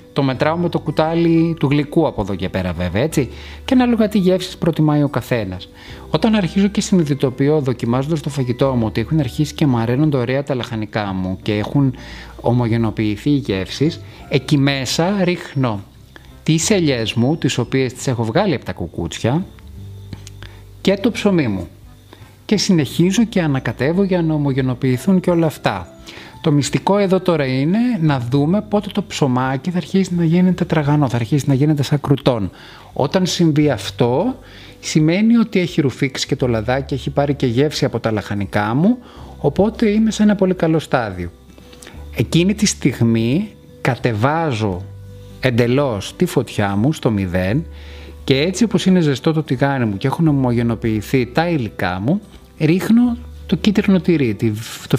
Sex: male